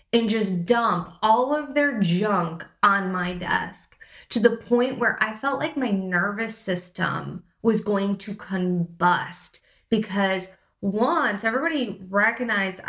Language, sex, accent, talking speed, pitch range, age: English, female, American, 130 wpm, 190-250 Hz, 20-39